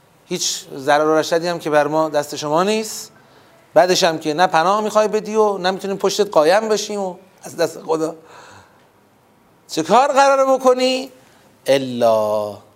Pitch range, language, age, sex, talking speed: 160-215 Hz, Persian, 30-49, male, 145 wpm